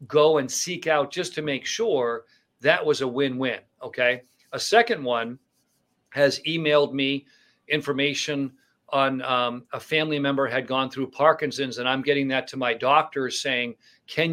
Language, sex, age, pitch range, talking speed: English, male, 50-69, 130-155 Hz, 160 wpm